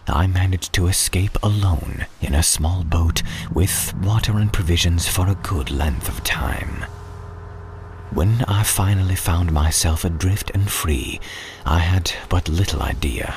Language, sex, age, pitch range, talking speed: English, male, 40-59, 80-95 Hz, 145 wpm